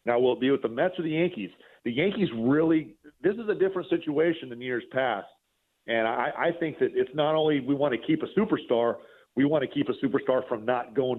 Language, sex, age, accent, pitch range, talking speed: English, male, 40-59, American, 130-190 Hz, 235 wpm